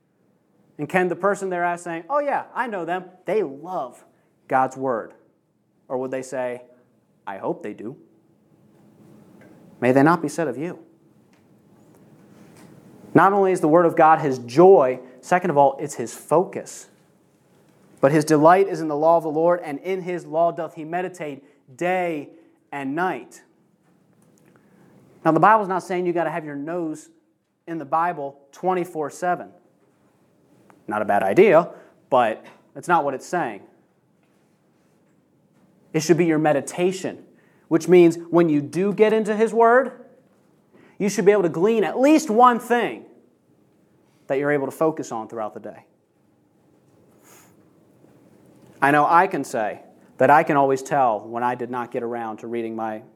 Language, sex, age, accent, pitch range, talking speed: English, male, 30-49, American, 130-180 Hz, 165 wpm